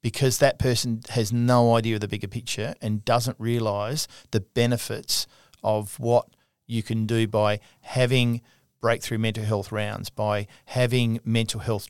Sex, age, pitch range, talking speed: male, 40-59, 105-120 Hz, 150 wpm